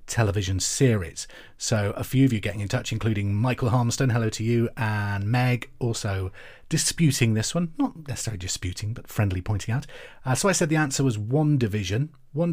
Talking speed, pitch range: 185 wpm, 105-135 Hz